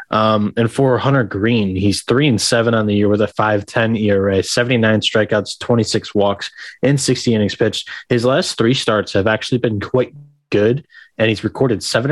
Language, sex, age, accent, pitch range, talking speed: English, male, 20-39, American, 105-125 Hz, 185 wpm